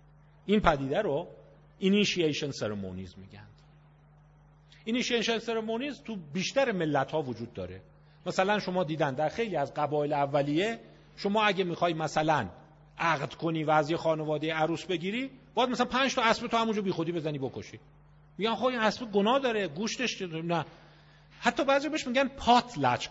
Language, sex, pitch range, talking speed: Persian, male, 145-210 Hz, 145 wpm